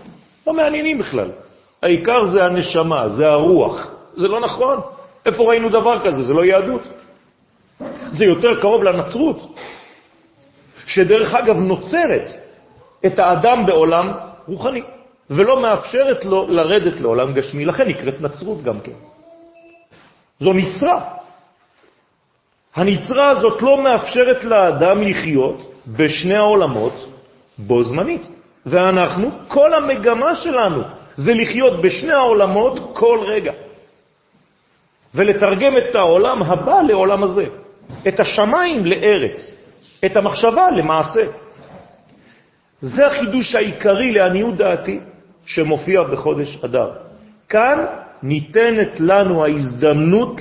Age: 40-59